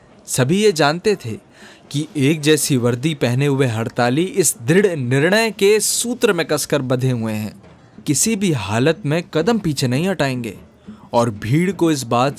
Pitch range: 125-165 Hz